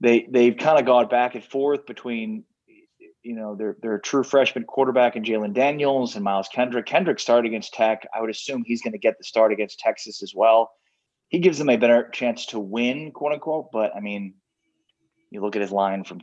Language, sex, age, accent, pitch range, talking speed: English, male, 30-49, American, 100-125 Hz, 215 wpm